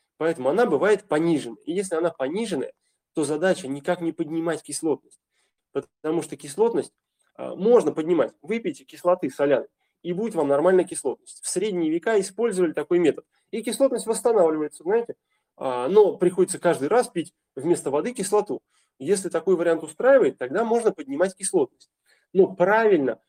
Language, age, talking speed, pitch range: Russian, 20-39, 140 wpm, 160-250 Hz